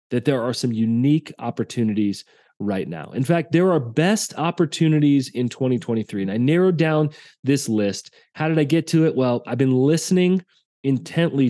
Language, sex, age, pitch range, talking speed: English, male, 30-49, 125-165 Hz, 170 wpm